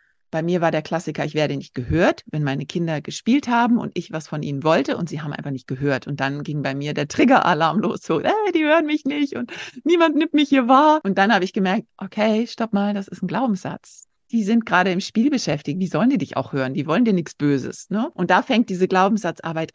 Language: German